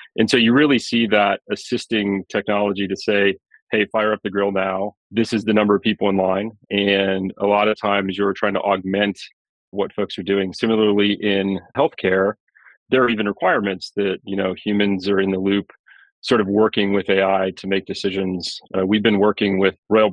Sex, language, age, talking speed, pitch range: male, English, 30-49, 195 wpm, 95-105 Hz